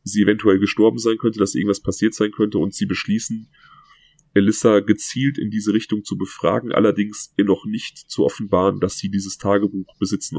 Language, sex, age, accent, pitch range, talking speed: German, male, 30-49, German, 100-105 Hz, 175 wpm